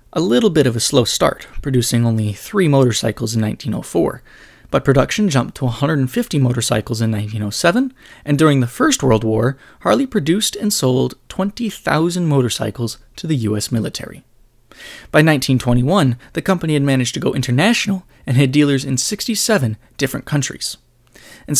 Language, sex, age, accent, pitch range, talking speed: English, male, 20-39, American, 120-165 Hz, 150 wpm